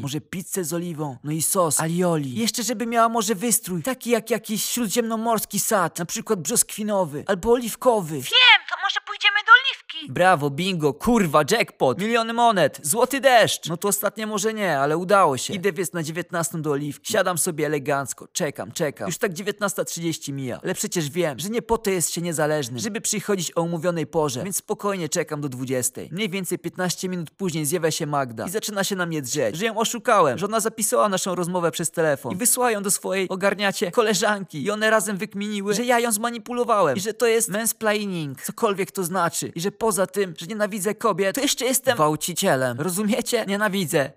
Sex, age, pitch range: male, 20-39, 160-220 Hz